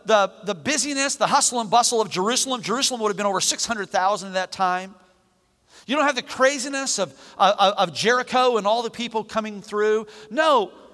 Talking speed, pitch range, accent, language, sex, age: 185 wpm, 155-230 Hz, American, English, male, 40-59